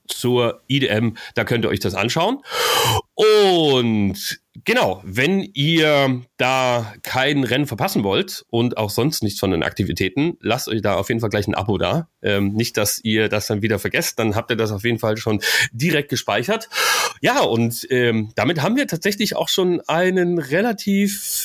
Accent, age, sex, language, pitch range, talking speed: German, 30-49, male, German, 120-165 Hz, 175 wpm